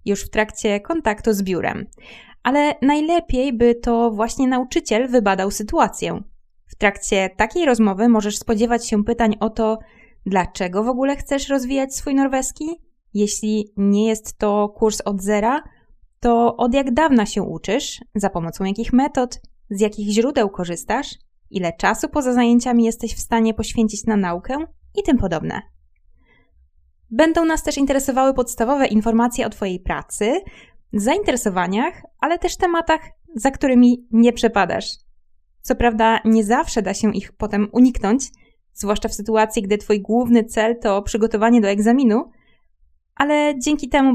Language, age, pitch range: Polish, 20-39, 205-250 Hz